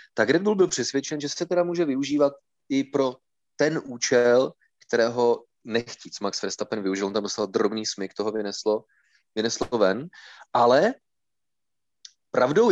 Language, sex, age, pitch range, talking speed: Czech, male, 30-49, 110-140 Hz, 135 wpm